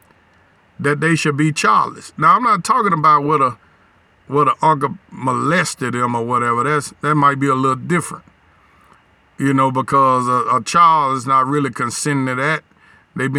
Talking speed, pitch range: 175 wpm, 135-160 Hz